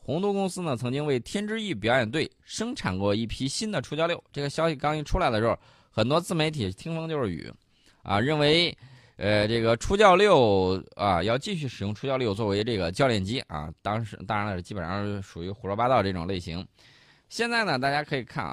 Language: Chinese